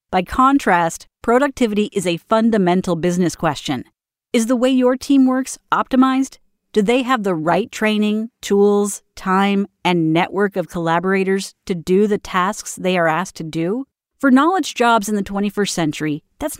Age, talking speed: 40-59, 160 wpm